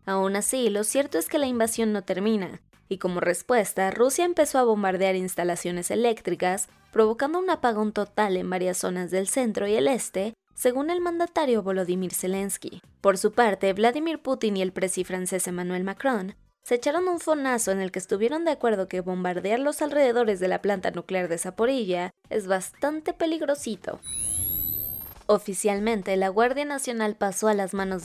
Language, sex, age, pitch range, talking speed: Spanish, female, 20-39, 190-255 Hz, 165 wpm